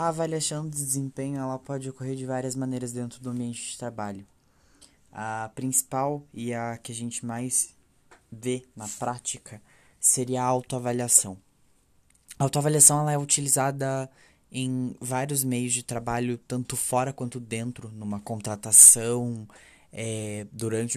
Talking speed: 135 wpm